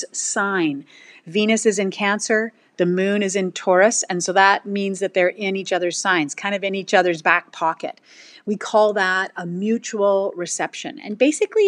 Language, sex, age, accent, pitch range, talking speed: English, female, 30-49, American, 175-225 Hz, 180 wpm